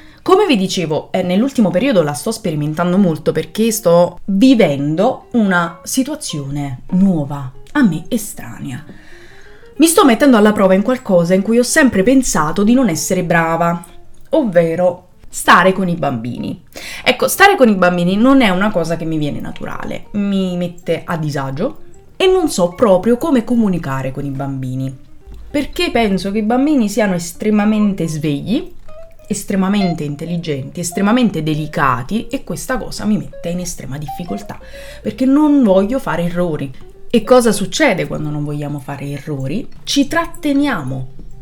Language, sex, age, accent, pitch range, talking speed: Italian, female, 20-39, native, 165-245 Hz, 145 wpm